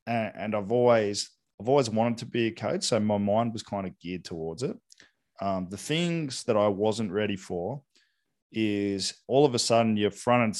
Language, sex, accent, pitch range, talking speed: English, male, Australian, 95-120 Hz, 200 wpm